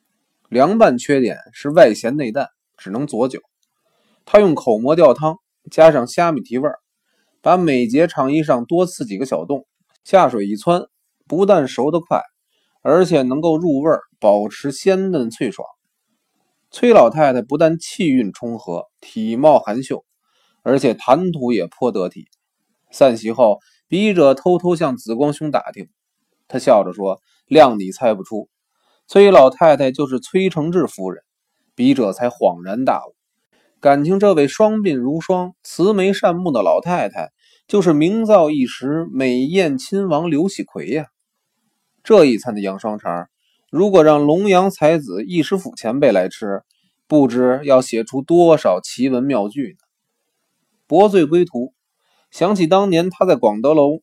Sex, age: male, 20-39